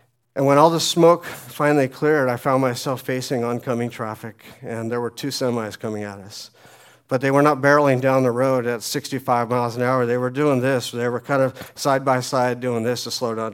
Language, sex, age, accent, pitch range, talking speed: English, male, 40-59, American, 125-145 Hz, 220 wpm